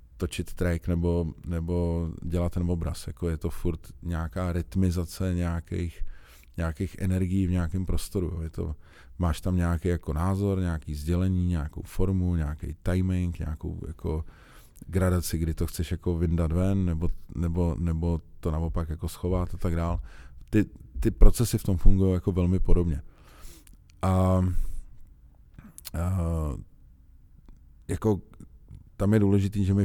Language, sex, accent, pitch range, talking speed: Czech, male, native, 85-95 Hz, 135 wpm